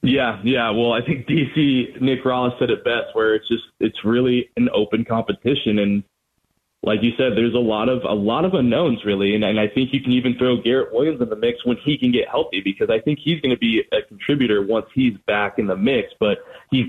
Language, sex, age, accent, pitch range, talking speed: English, male, 20-39, American, 115-145 Hz, 235 wpm